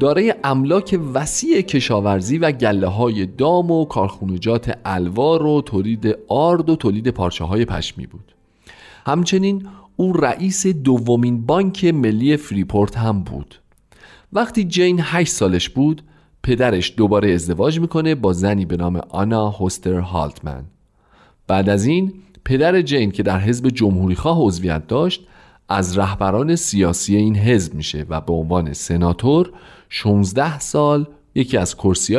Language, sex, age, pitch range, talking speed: Persian, male, 40-59, 95-150 Hz, 130 wpm